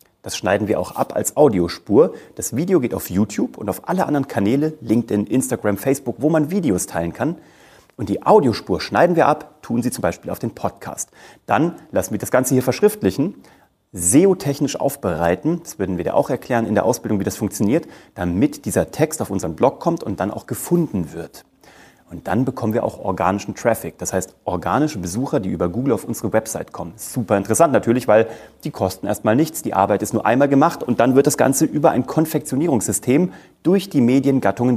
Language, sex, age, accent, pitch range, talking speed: German, male, 30-49, German, 105-140 Hz, 195 wpm